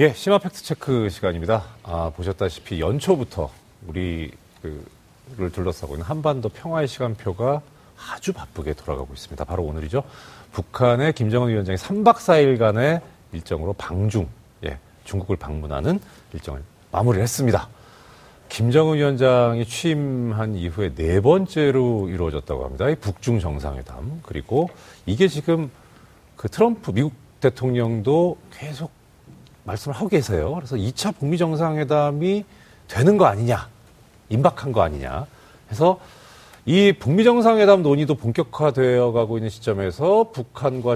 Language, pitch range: Korean, 95-150 Hz